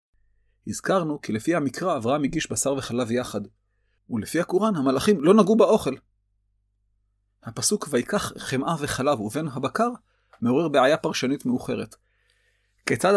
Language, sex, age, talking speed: Hebrew, male, 30-49, 120 wpm